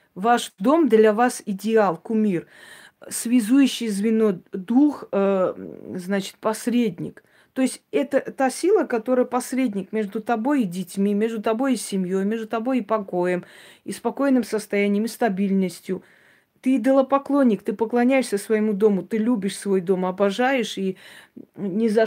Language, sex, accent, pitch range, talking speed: Russian, female, native, 205-245 Hz, 135 wpm